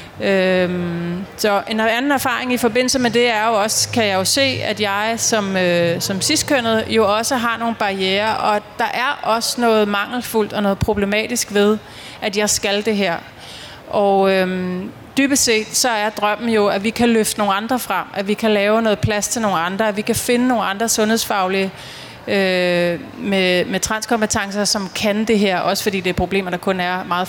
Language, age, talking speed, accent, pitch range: Danish, 30-49, 190 wpm, native, 190-230 Hz